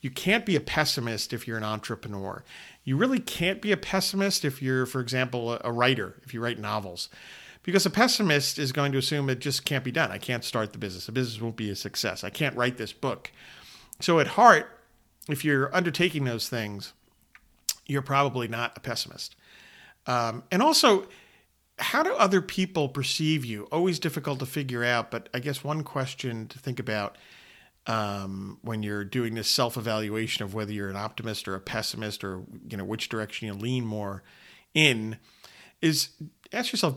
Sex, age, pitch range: male, 40-59, 110-150 Hz